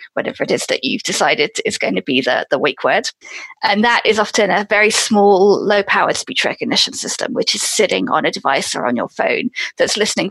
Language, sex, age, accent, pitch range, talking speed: English, female, 20-39, British, 205-275 Hz, 215 wpm